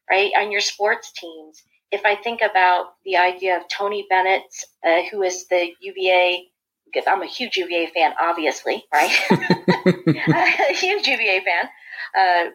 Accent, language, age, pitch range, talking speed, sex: American, English, 40-59, 175-230 Hz, 150 wpm, female